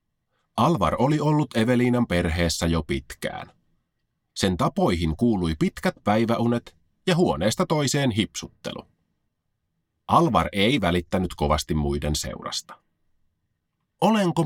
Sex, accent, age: male, native, 30-49